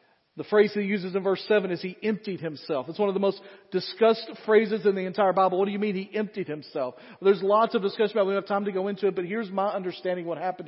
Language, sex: English, male